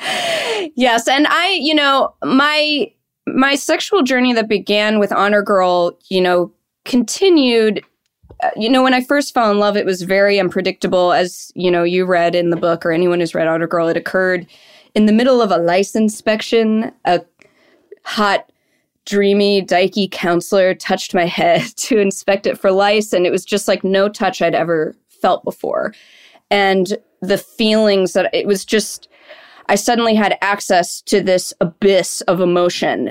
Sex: female